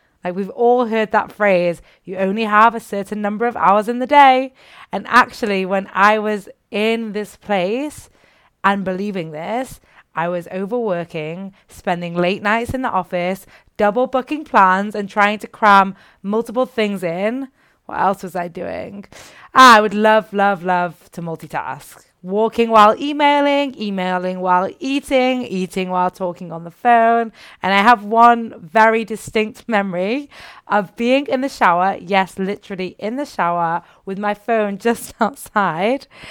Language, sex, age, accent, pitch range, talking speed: English, female, 20-39, British, 180-225 Hz, 155 wpm